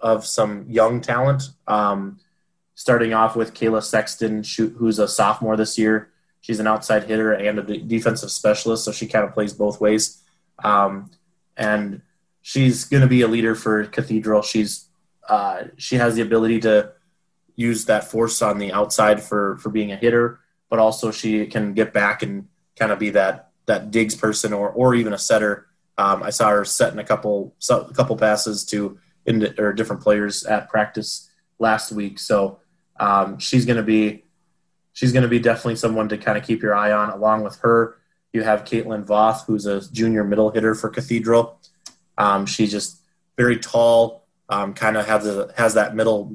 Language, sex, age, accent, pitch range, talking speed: English, male, 20-39, American, 105-120 Hz, 190 wpm